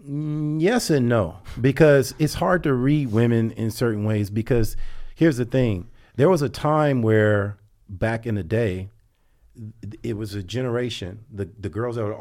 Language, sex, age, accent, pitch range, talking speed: English, male, 40-59, American, 100-125 Hz, 165 wpm